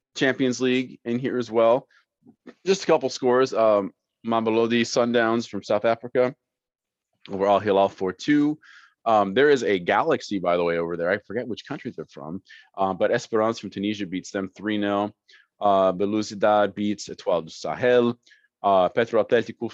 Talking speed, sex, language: 160 wpm, male, English